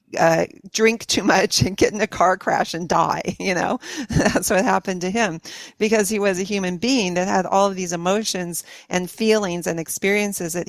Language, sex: English, female